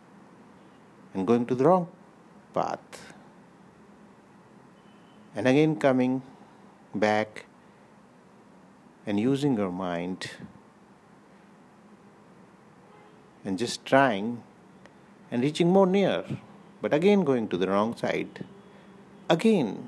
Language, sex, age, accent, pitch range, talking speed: English, male, 60-79, Indian, 125-205 Hz, 90 wpm